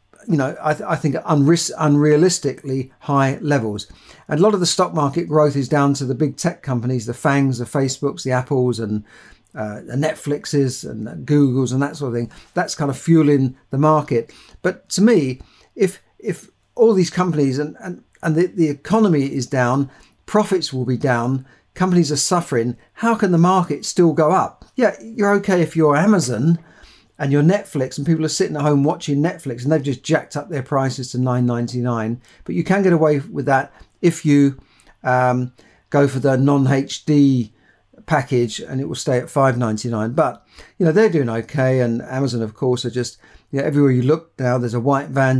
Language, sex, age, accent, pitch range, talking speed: English, male, 50-69, British, 125-160 Hz, 190 wpm